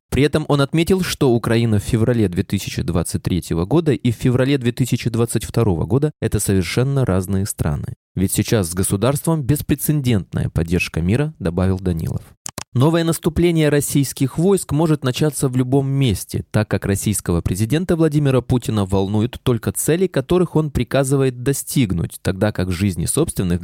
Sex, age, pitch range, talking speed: male, 20-39, 100-145 Hz, 135 wpm